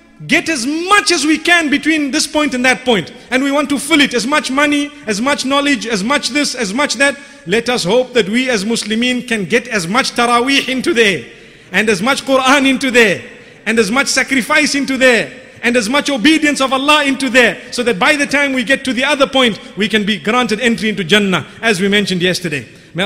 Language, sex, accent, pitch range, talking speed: English, male, South African, 205-270 Hz, 225 wpm